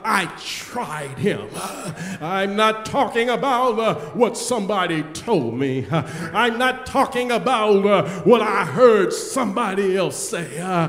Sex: male